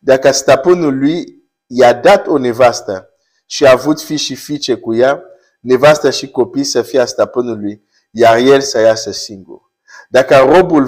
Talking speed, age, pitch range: 155 wpm, 50-69, 110-150 Hz